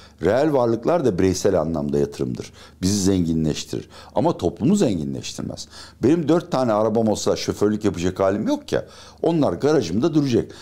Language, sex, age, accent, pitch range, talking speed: Turkish, male, 60-79, native, 85-115 Hz, 135 wpm